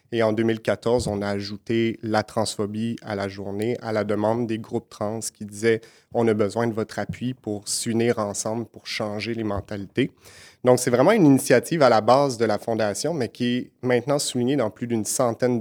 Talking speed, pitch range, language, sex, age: 210 wpm, 105-125 Hz, French, male, 30-49